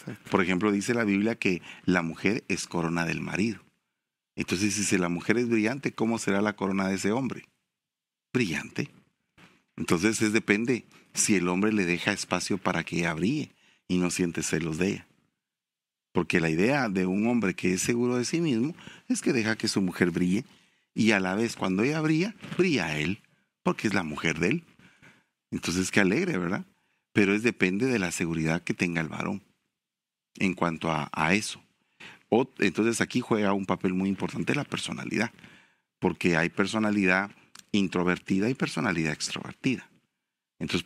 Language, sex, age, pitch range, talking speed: English, male, 40-59, 85-110 Hz, 165 wpm